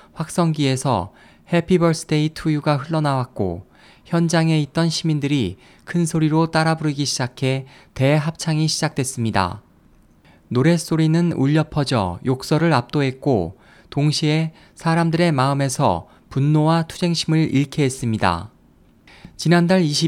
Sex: male